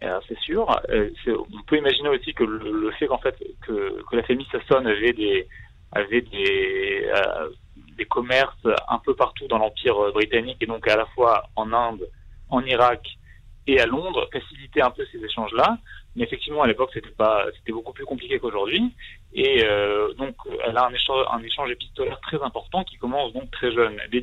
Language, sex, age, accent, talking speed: Hebrew, male, 40-59, French, 205 wpm